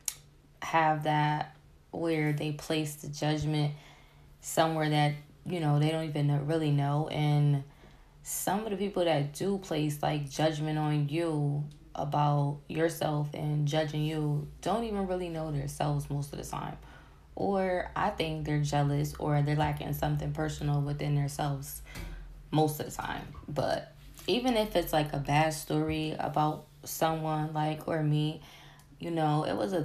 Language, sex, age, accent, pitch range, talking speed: English, female, 10-29, American, 145-155 Hz, 155 wpm